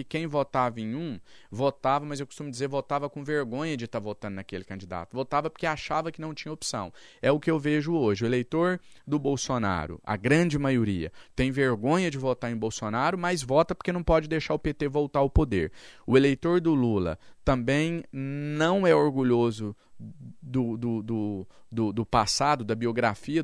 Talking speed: 175 wpm